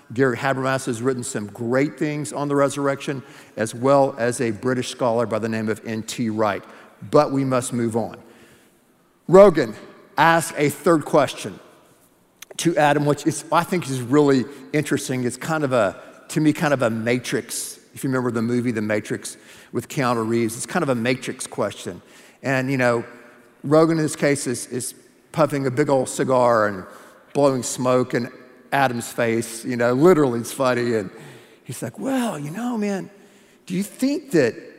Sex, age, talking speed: male, 50-69, 180 wpm